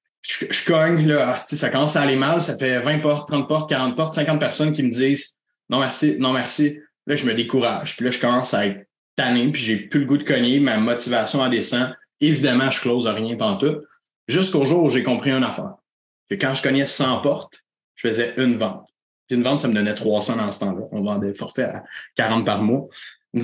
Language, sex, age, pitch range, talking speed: French, male, 30-49, 130-170 Hz, 230 wpm